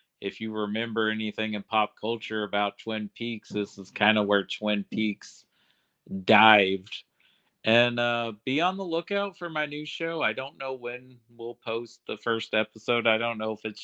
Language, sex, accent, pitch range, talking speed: English, male, American, 105-115 Hz, 180 wpm